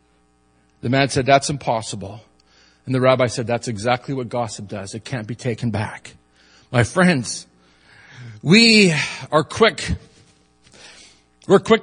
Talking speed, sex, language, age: 130 wpm, male, English, 50-69